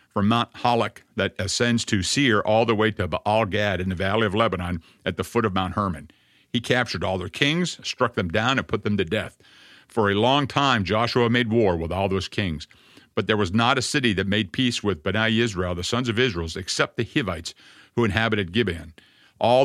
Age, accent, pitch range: 50-69, American, 95-120 Hz